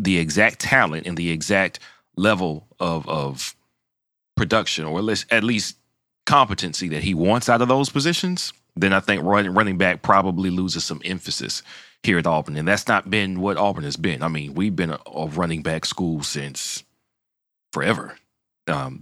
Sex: male